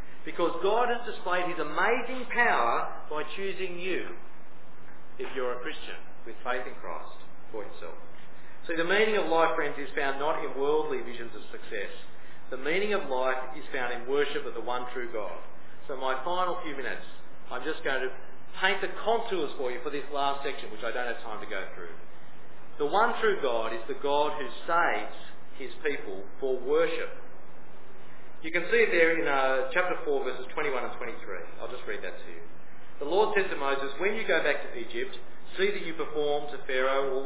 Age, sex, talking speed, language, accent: 40-59, male, 200 wpm, English, Australian